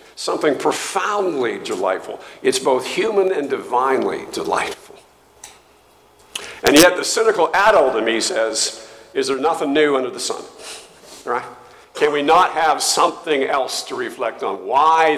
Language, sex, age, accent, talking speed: English, male, 50-69, American, 135 wpm